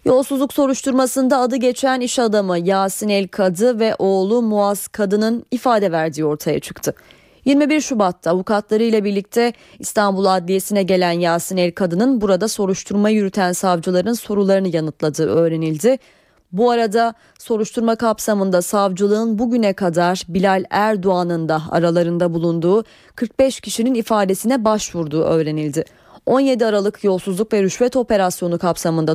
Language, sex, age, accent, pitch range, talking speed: Turkish, female, 30-49, native, 175-225 Hz, 115 wpm